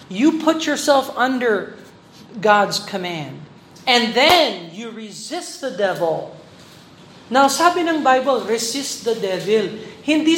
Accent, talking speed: native, 115 wpm